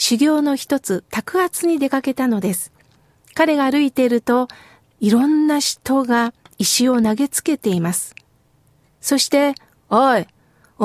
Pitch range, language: 235-285 Hz, Japanese